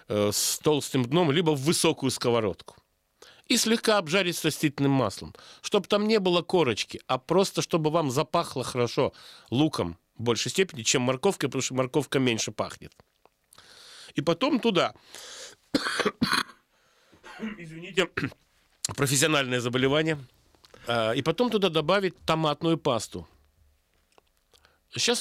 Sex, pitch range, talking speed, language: male, 120-175 Hz, 120 wpm, Russian